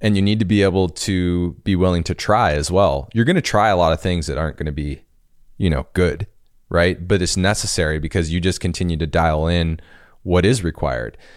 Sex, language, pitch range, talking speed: male, English, 90-115 Hz, 215 wpm